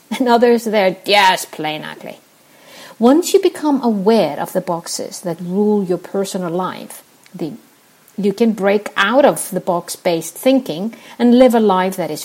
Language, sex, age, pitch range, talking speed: English, female, 50-69, 185-245 Hz, 155 wpm